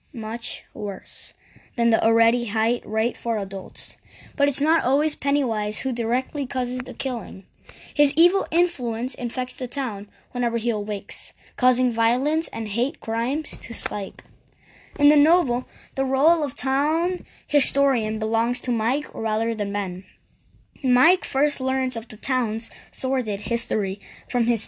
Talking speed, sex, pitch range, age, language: 145 wpm, female, 220-275 Hz, 10-29, English